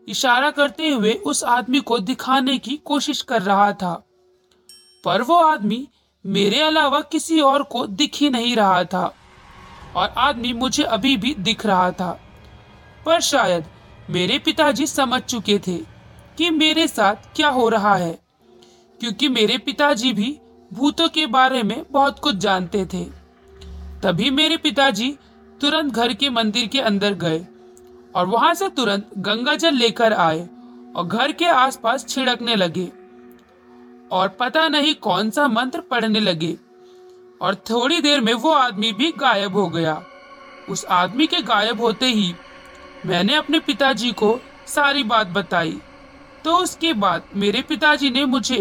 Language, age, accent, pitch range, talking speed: Hindi, 40-59, native, 195-285 Hz, 150 wpm